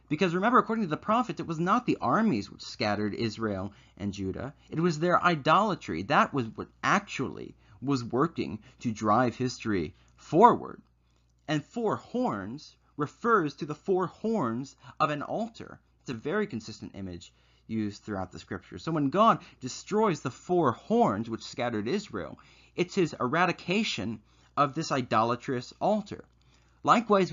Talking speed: 150 wpm